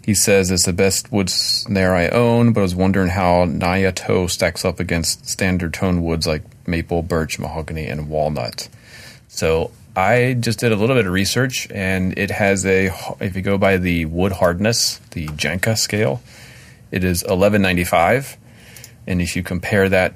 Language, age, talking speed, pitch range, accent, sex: English, 30-49, 175 wpm, 90-115 Hz, American, male